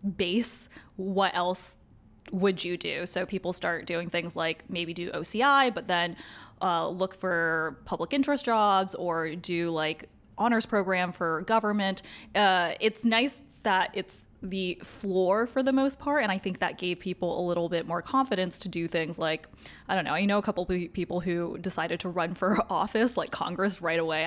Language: English